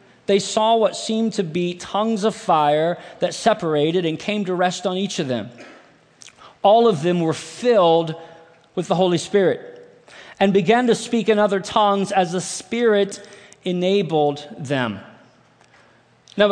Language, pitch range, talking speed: English, 175-215 Hz, 150 wpm